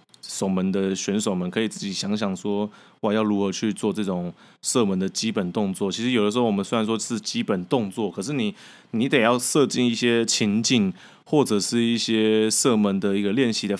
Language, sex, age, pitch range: Chinese, male, 20-39, 105-135 Hz